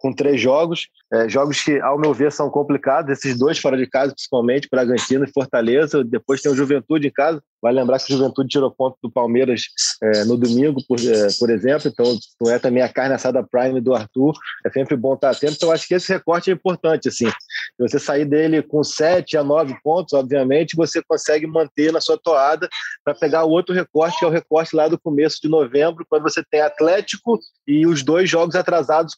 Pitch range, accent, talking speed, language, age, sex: 140-170 Hz, Brazilian, 220 wpm, Portuguese, 20-39, male